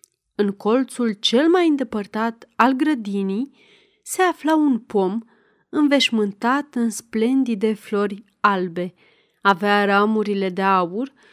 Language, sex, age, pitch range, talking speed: Romanian, female, 30-49, 210-280 Hz, 105 wpm